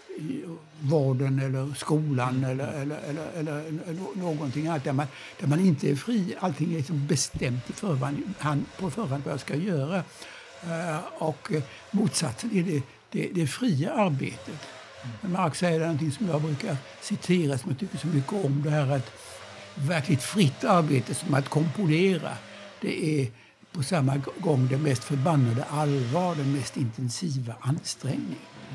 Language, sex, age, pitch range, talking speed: English, male, 60-79, 135-170 Hz, 150 wpm